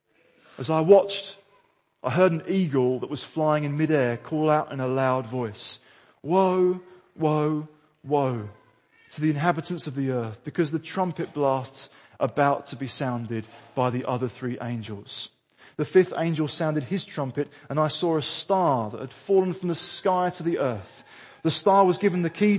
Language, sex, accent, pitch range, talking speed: English, male, British, 130-170 Hz, 175 wpm